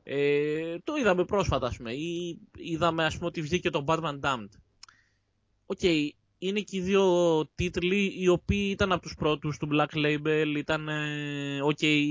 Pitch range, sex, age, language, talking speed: 125-175 Hz, male, 20-39, Greek, 145 wpm